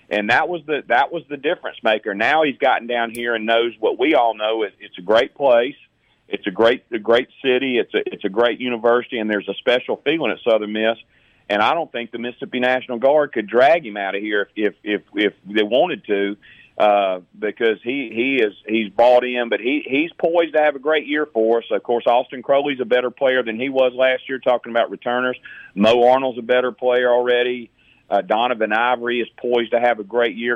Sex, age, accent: male, 40-59, American